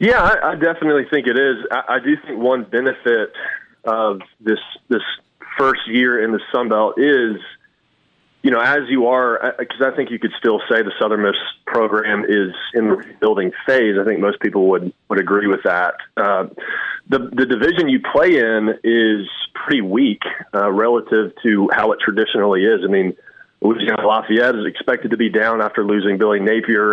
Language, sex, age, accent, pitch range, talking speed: English, male, 30-49, American, 105-140 Hz, 180 wpm